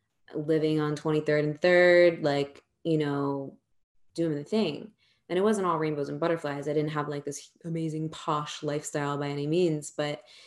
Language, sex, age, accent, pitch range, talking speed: English, female, 20-39, American, 150-165 Hz, 170 wpm